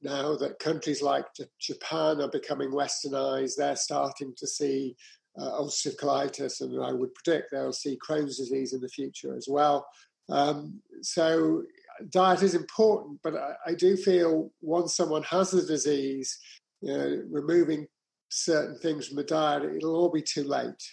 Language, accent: English, British